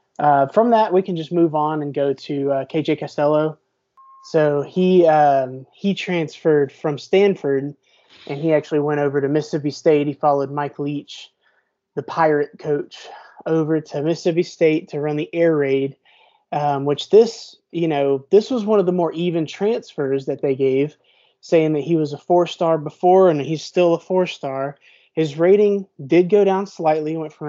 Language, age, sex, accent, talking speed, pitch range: English, 20-39, male, American, 175 wpm, 145-170 Hz